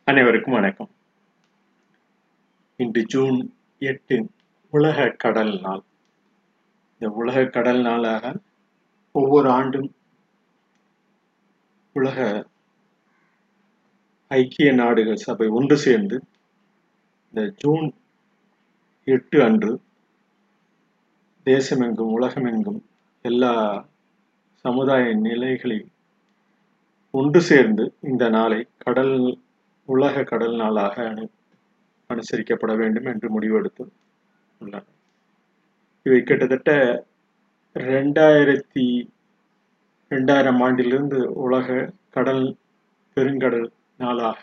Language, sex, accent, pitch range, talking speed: Tamil, male, native, 125-205 Hz, 70 wpm